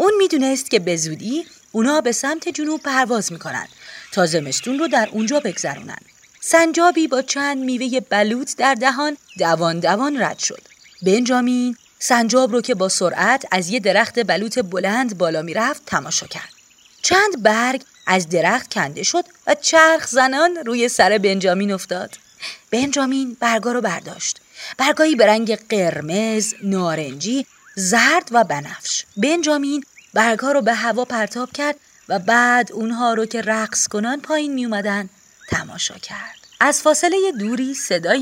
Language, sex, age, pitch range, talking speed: Persian, female, 30-49, 200-280 Hz, 140 wpm